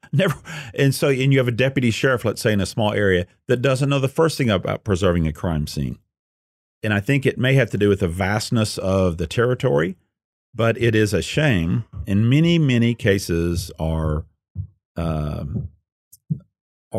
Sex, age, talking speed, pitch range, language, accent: male, 50-69, 180 wpm, 85-115 Hz, English, American